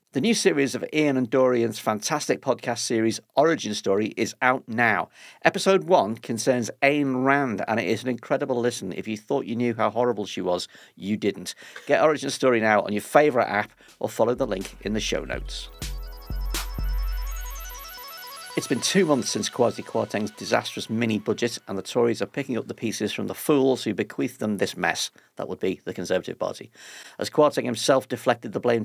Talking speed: 185 wpm